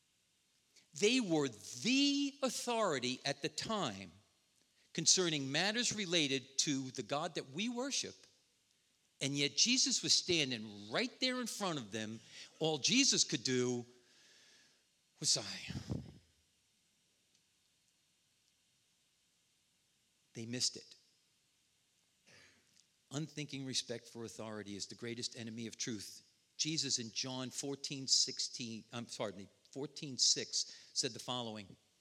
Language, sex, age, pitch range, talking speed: English, male, 50-69, 115-155 Hz, 105 wpm